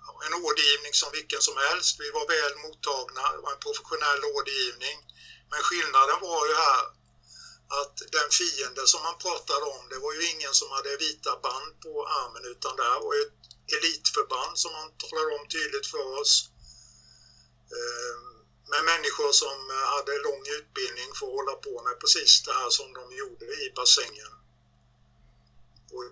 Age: 50-69